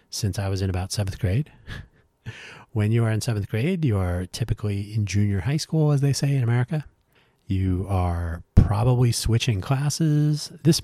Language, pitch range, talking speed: English, 95-125 Hz, 170 wpm